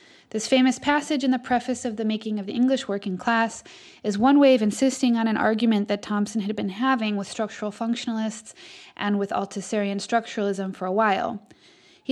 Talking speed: 190 wpm